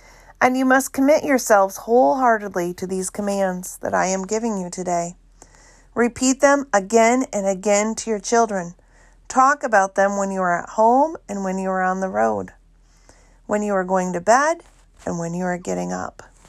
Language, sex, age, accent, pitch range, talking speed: English, female, 40-59, American, 185-240 Hz, 180 wpm